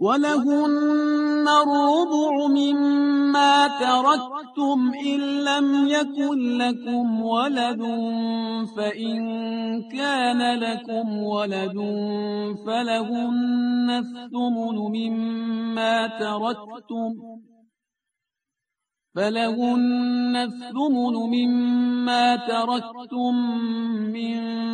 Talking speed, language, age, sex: 55 wpm, Persian, 50-69, male